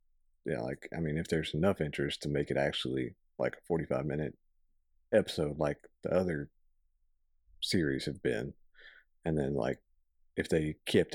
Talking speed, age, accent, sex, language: 155 wpm, 40-59, American, male, English